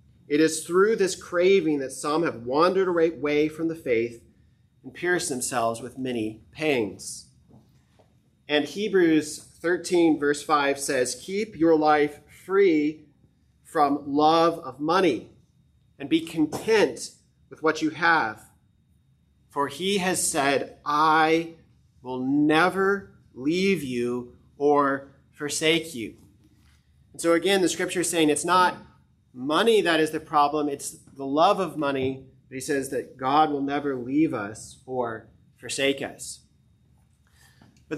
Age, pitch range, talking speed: 30-49, 135-170 Hz, 130 wpm